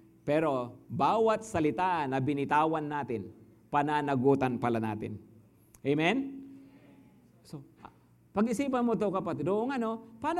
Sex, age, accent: male, 50-69, Filipino